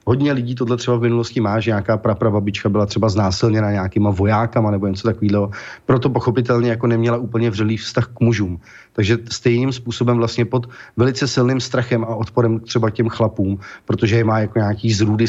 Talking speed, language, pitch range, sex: 180 wpm, Slovak, 110-125 Hz, male